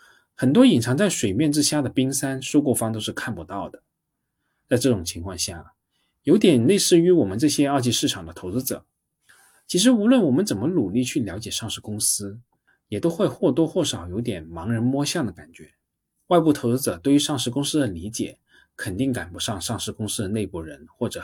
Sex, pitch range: male, 100-155 Hz